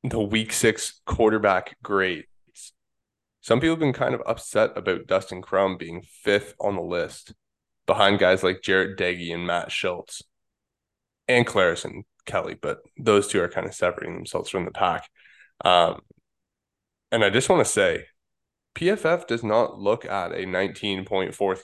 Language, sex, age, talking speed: English, male, 20-39, 160 wpm